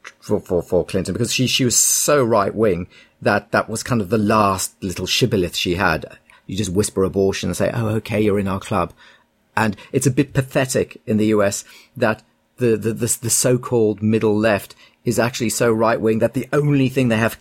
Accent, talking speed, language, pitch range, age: British, 210 wpm, English, 100-120 Hz, 40-59